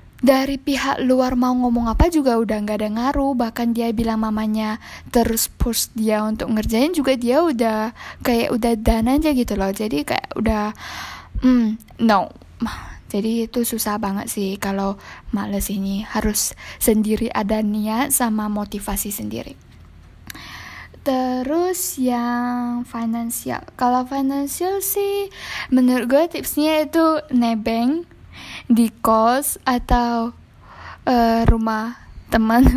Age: 10-29